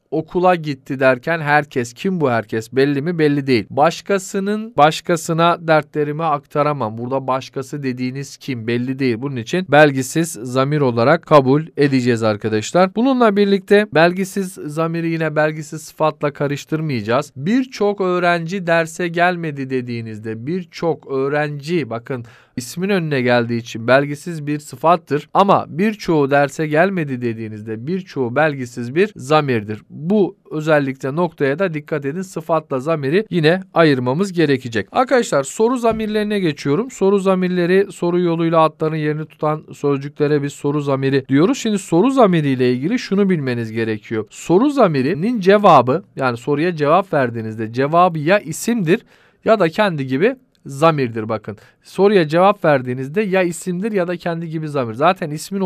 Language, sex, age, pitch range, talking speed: Turkish, male, 40-59, 135-180 Hz, 135 wpm